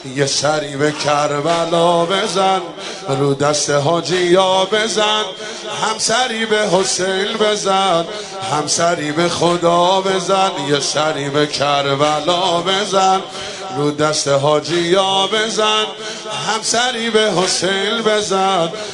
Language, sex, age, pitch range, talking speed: Persian, male, 30-49, 185-230 Hz, 110 wpm